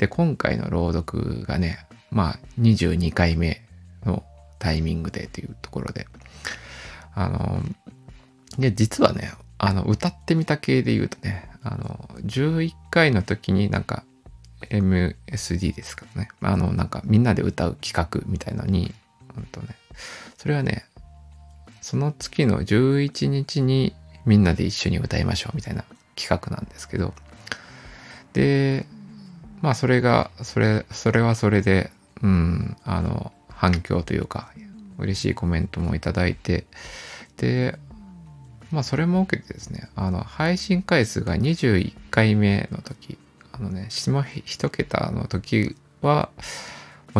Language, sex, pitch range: Japanese, male, 90-130 Hz